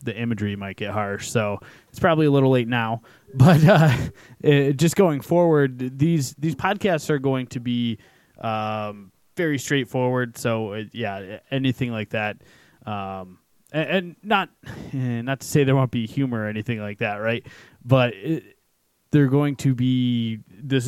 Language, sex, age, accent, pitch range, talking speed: English, male, 20-39, American, 110-150 Hz, 160 wpm